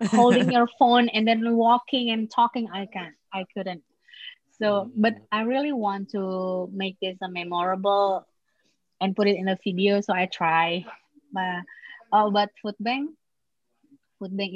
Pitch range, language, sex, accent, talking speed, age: 185-240 Hz, English, female, Indonesian, 155 wpm, 20-39